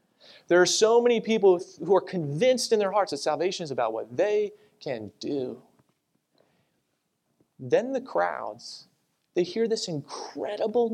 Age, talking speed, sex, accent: 30-49, 145 wpm, male, American